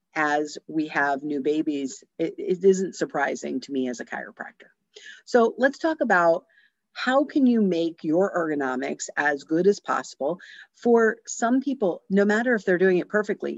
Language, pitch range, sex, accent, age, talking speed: English, 150-210 Hz, female, American, 50-69, 170 wpm